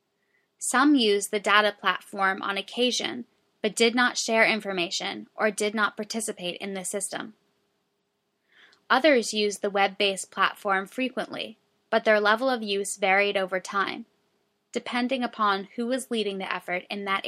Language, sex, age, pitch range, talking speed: English, female, 10-29, 195-230 Hz, 145 wpm